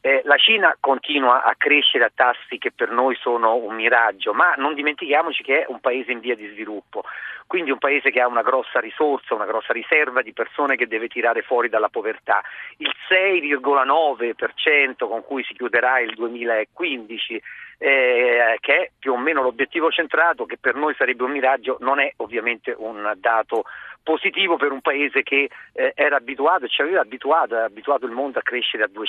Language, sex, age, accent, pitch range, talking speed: Italian, male, 40-59, native, 140-215 Hz, 185 wpm